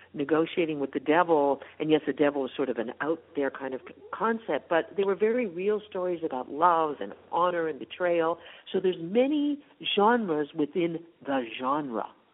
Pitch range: 130-180 Hz